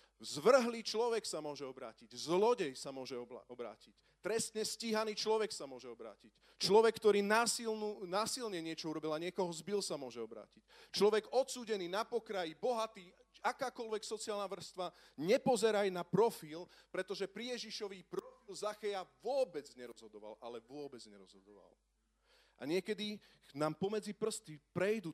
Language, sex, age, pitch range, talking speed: Slovak, male, 40-59, 130-205 Hz, 125 wpm